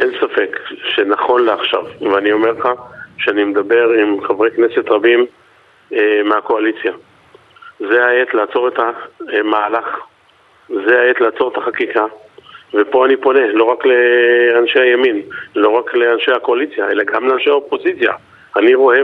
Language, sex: Hebrew, male